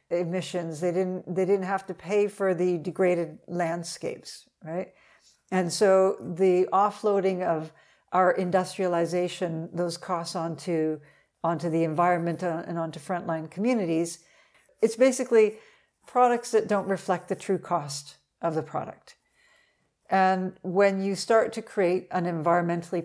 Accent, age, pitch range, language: American, 60-79, 170-195 Hz, English